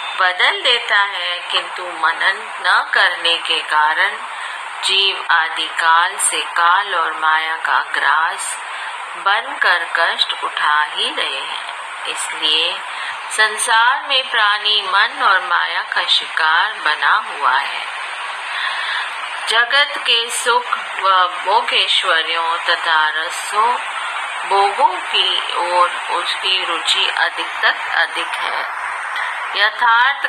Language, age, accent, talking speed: Hindi, 30-49, native, 105 wpm